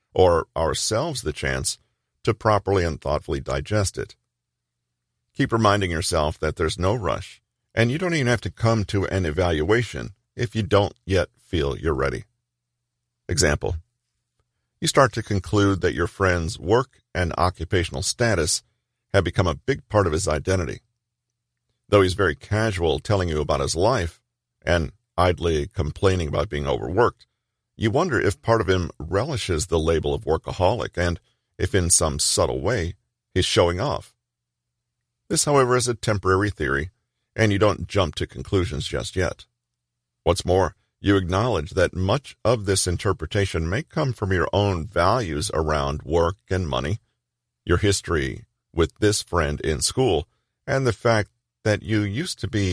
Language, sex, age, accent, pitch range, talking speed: English, male, 50-69, American, 75-110 Hz, 155 wpm